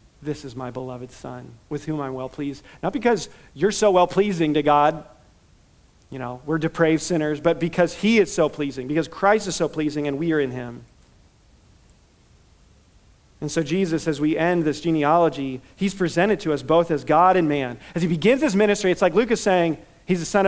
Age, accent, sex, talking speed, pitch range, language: 40-59, American, male, 200 wpm, 125-160 Hz, English